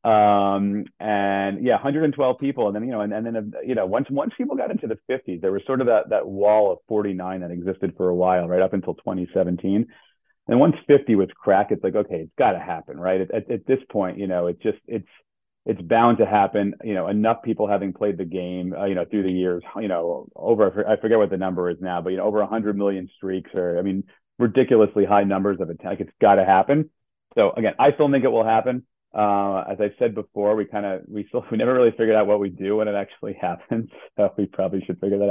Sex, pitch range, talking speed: male, 95-110 Hz, 250 wpm